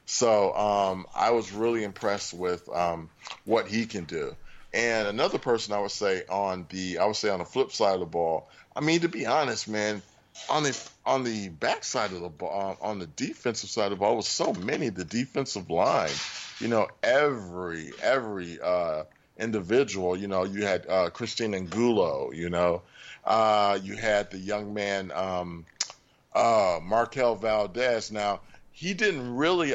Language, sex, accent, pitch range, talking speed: English, male, American, 95-115 Hz, 175 wpm